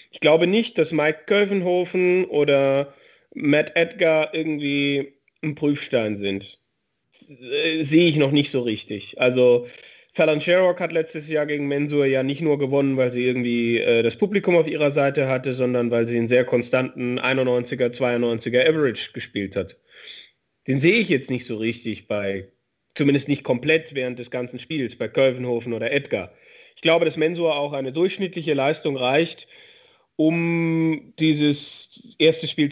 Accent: German